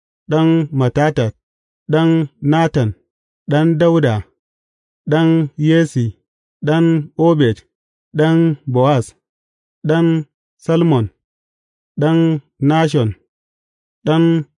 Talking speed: 70 wpm